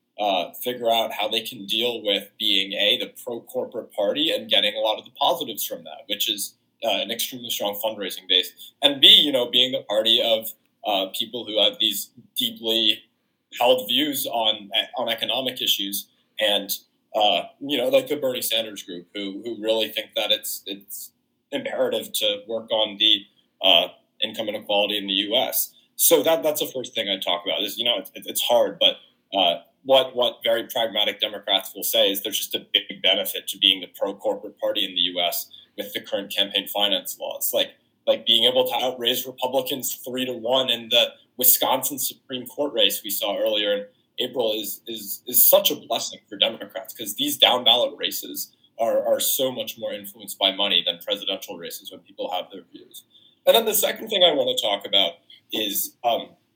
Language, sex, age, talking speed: English, male, 20-39, 195 wpm